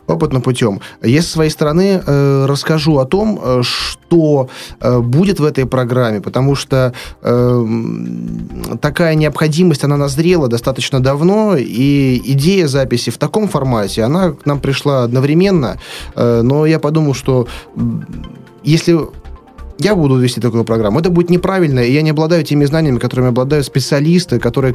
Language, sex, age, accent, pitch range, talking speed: Russian, male, 20-39, native, 120-155 Hz, 150 wpm